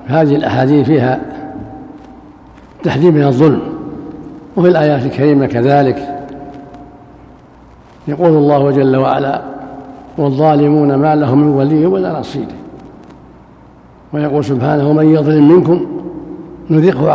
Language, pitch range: Arabic, 150-170 Hz